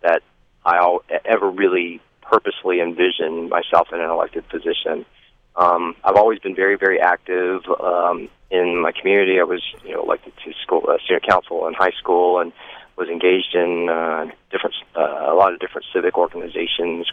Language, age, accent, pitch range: English, 30-49, American, 85-105 Hz